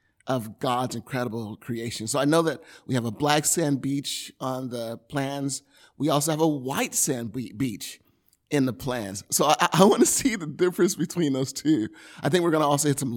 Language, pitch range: English, 115-160 Hz